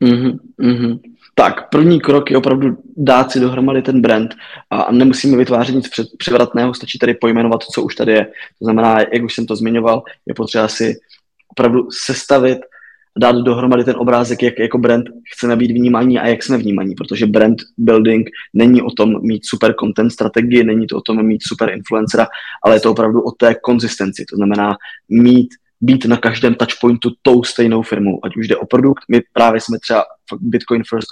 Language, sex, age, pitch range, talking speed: Czech, male, 20-39, 110-125 Hz, 180 wpm